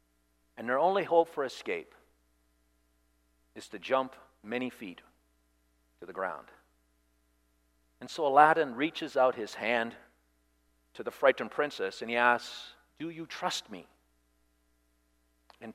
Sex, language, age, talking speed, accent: male, English, 50-69, 125 wpm, American